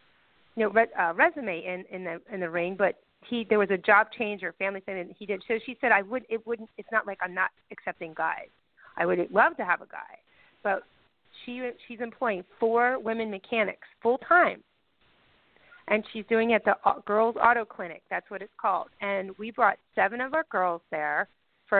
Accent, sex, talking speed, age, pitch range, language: American, female, 205 wpm, 40-59, 190-245 Hz, English